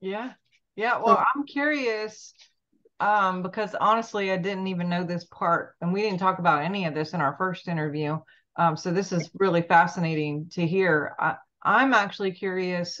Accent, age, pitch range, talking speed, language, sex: American, 30-49, 165-190 Hz, 170 wpm, English, female